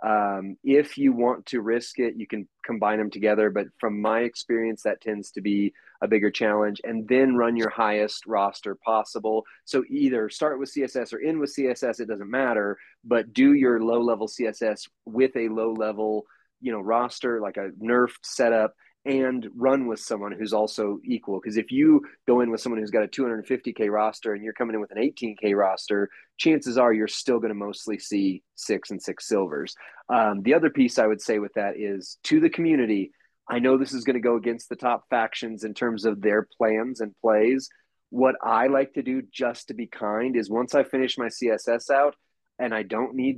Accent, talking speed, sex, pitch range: American, 205 wpm, male, 110-130 Hz